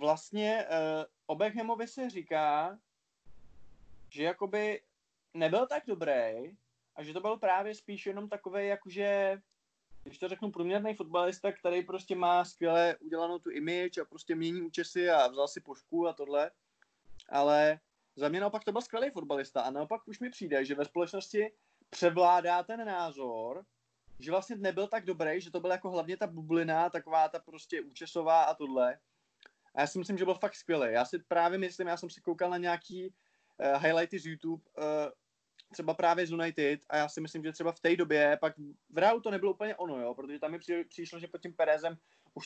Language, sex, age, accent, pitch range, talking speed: Czech, male, 20-39, native, 155-190 Hz, 190 wpm